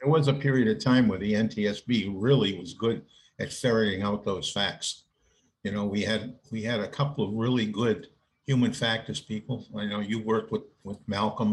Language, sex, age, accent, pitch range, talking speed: English, male, 50-69, American, 105-135 Hz, 200 wpm